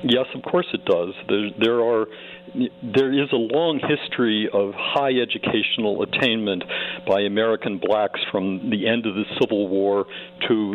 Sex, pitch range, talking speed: male, 100-110 Hz, 155 wpm